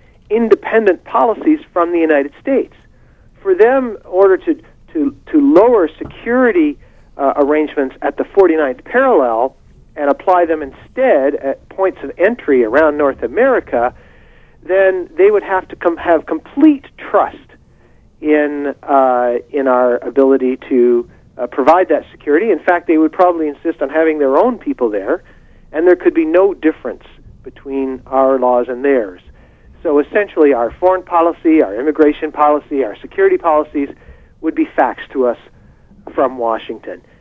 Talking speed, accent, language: 150 wpm, American, English